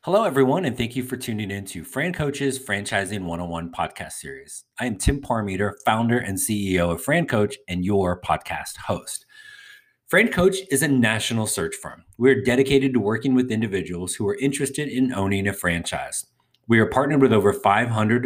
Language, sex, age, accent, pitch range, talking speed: English, male, 30-49, American, 95-130 Hz, 170 wpm